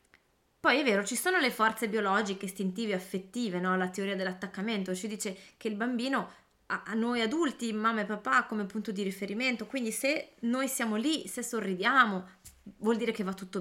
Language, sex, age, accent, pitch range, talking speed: Italian, female, 20-39, native, 190-250 Hz, 180 wpm